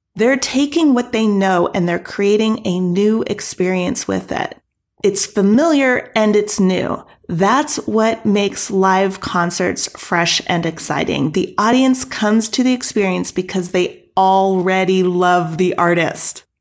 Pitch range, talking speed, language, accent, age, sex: 180-220 Hz, 135 wpm, English, American, 30-49, female